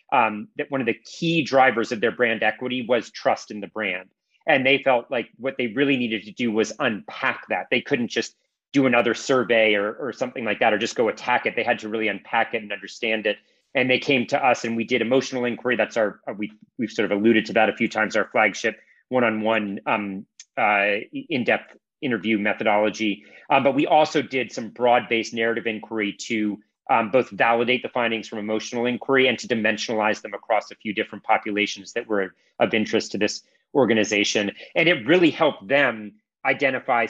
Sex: male